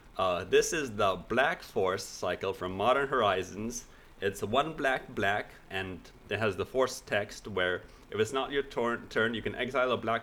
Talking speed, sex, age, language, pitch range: 180 wpm, male, 30-49, English, 105-155 Hz